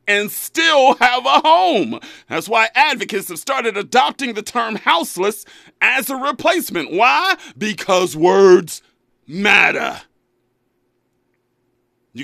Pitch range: 220-310 Hz